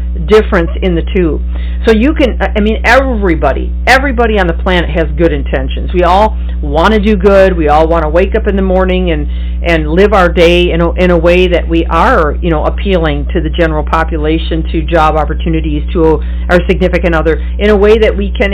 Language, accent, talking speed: English, American, 205 wpm